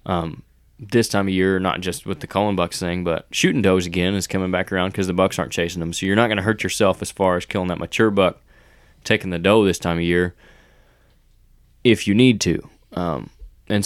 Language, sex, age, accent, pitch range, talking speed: English, male, 20-39, American, 90-105 Hz, 230 wpm